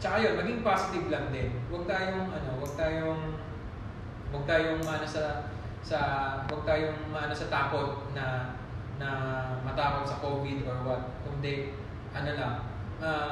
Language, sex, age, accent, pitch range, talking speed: Filipino, male, 20-39, native, 120-155 Hz, 150 wpm